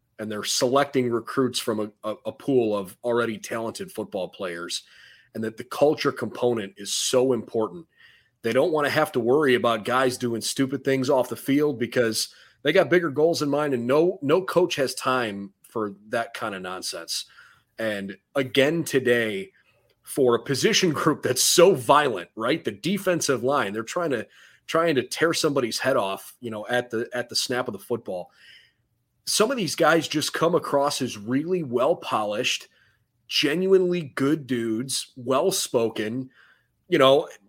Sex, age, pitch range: male, 30-49, 115-150 Hz